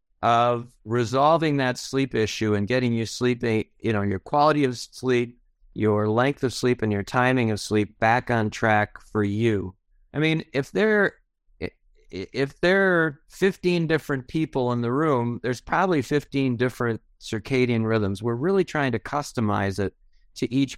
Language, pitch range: English, 105-140 Hz